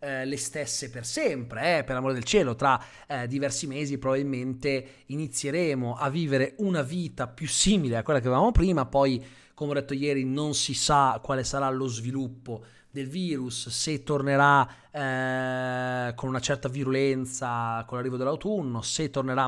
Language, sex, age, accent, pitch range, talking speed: Italian, male, 30-49, native, 130-180 Hz, 160 wpm